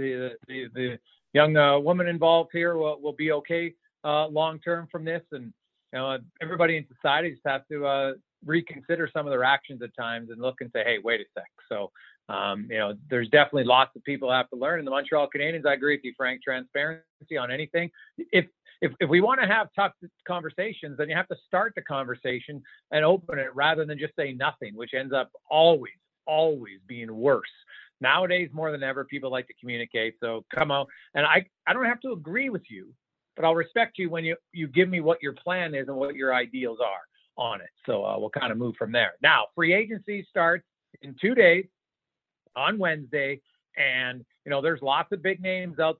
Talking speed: 215 wpm